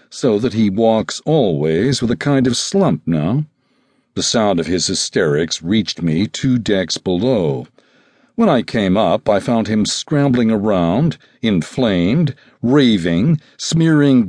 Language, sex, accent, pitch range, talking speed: English, male, American, 95-140 Hz, 140 wpm